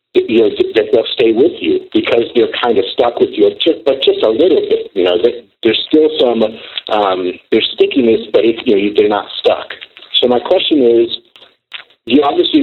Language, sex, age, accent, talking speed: English, male, 50-69, American, 190 wpm